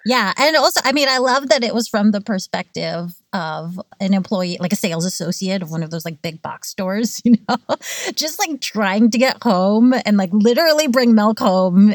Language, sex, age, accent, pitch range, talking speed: English, female, 30-49, American, 180-235 Hz, 210 wpm